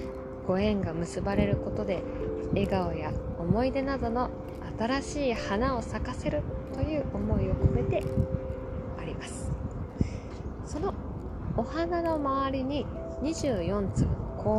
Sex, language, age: female, Japanese, 20-39